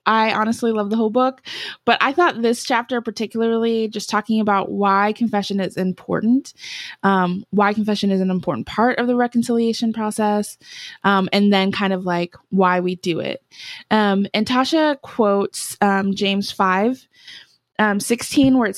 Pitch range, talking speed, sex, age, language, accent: 195-240 Hz, 165 wpm, female, 20-39, English, American